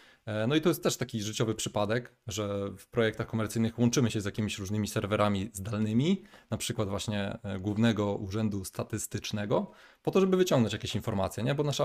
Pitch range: 105-120 Hz